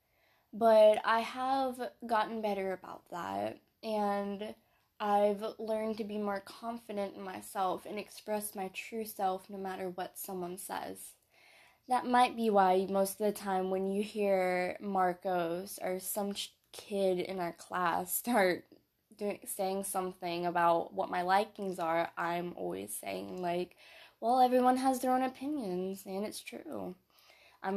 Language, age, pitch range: English, 10-29, 185-225 Hz